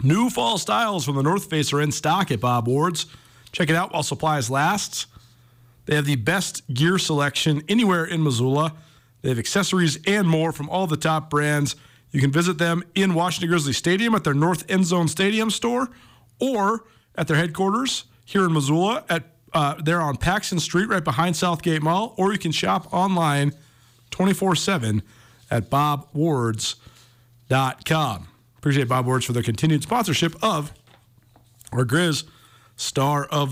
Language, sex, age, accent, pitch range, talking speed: English, male, 40-59, American, 120-165 Hz, 160 wpm